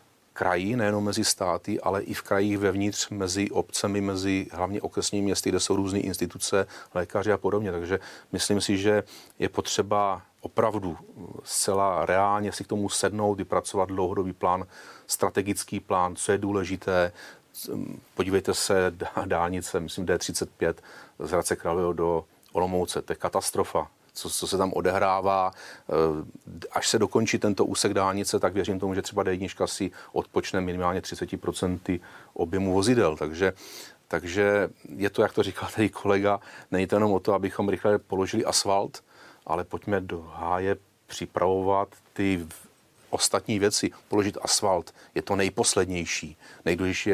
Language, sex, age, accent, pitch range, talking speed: Czech, male, 40-59, native, 95-105 Hz, 140 wpm